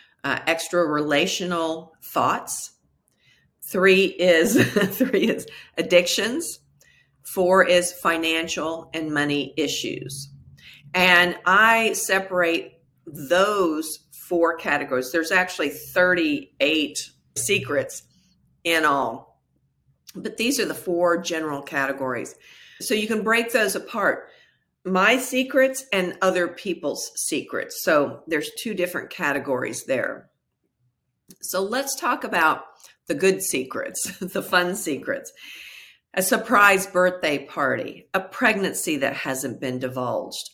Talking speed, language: 105 wpm, English